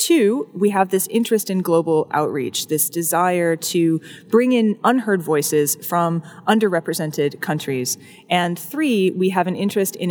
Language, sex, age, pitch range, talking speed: English, female, 20-39, 165-230 Hz, 150 wpm